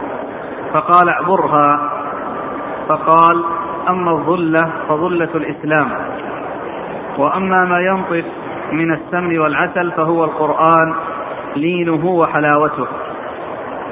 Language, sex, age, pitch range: Arabic, male, 40-59, 160-180 Hz